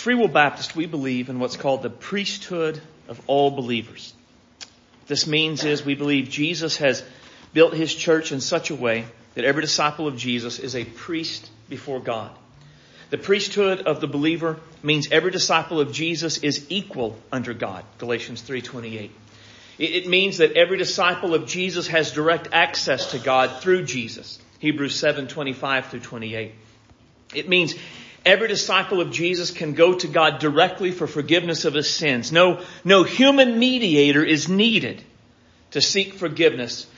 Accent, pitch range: American, 130-175 Hz